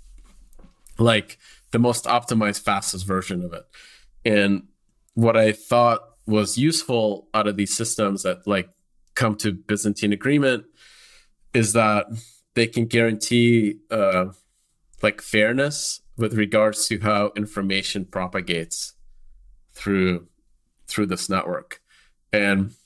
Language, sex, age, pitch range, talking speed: English, male, 30-49, 95-115 Hz, 115 wpm